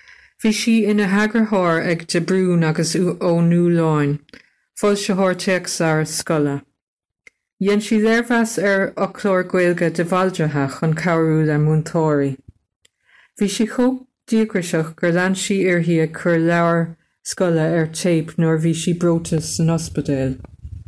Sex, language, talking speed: female, English, 135 wpm